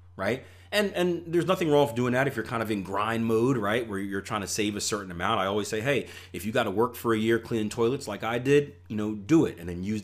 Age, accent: 30-49, American